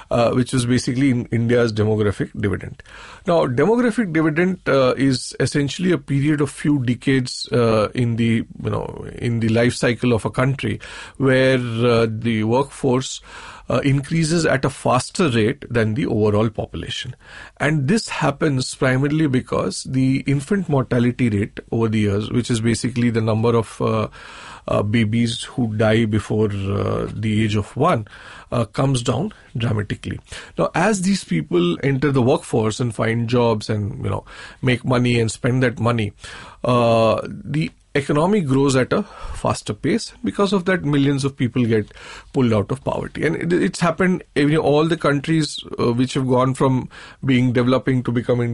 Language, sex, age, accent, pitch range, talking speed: English, male, 40-59, Indian, 115-140 Hz, 165 wpm